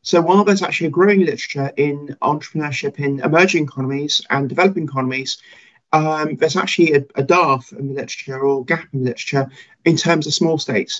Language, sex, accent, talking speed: English, male, British, 185 wpm